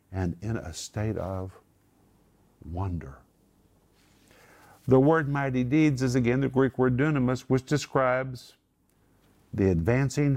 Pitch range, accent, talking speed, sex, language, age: 90-125 Hz, American, 115 wpm, male, English, 50-69